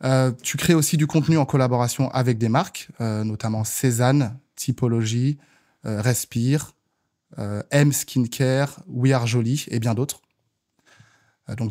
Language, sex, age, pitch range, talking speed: French, male, 20-39, 115-135 Hz, 145 wpm